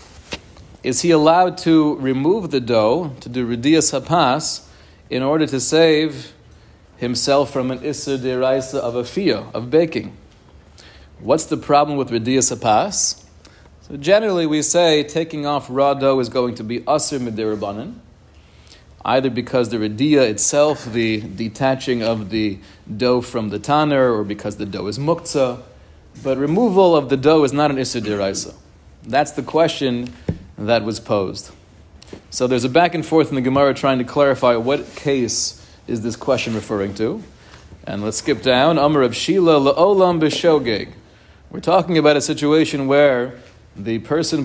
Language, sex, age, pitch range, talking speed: English, male, 40-59, 115-150 Hz, 160 wpm